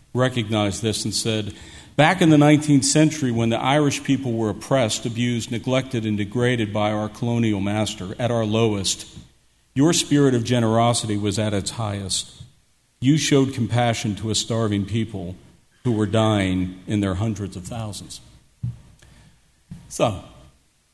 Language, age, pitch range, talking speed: English, 50-69, 110-140 Hz, 145 wpm